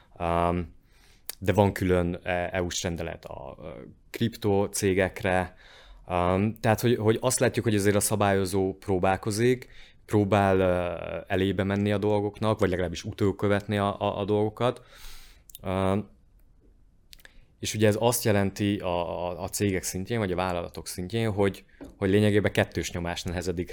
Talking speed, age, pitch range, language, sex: 115 wpm, 20-39, 90-105 Hz, Hungarian, male